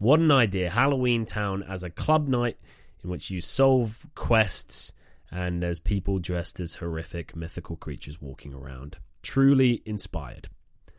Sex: male